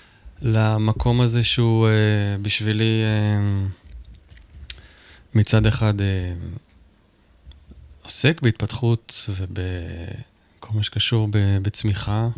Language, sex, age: Hebrew, male, 20-39